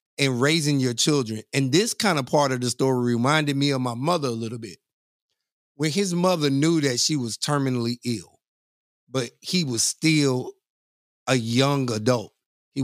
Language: English